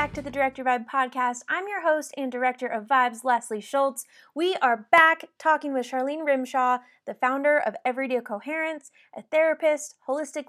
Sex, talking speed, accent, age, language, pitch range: female, 170 wpm, American, 20-39, English, 220-275 Hz